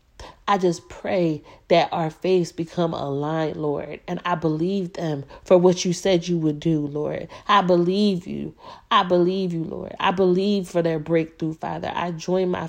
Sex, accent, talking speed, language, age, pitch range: female, American, 175 wpm, English, 30-49, 160-185 Hz